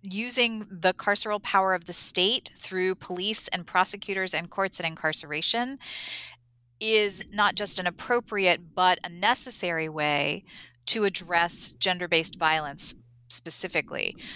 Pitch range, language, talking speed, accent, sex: 165-210 Hz, English, 120 wpm, American, female